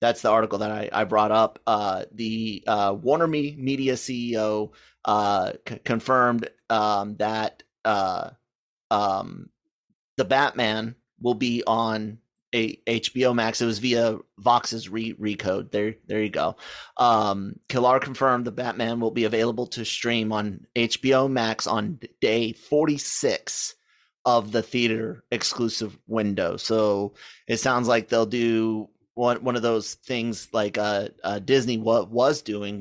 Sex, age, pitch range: male, 30-49, 110-130 Hz